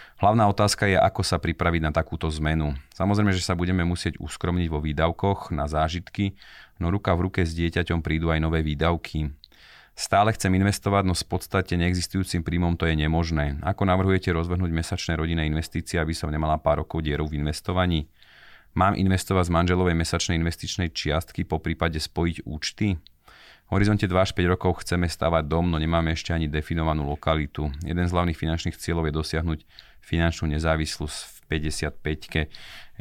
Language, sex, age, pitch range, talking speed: Slovak, male, 30-49, 80-90 Hz, 165 wpm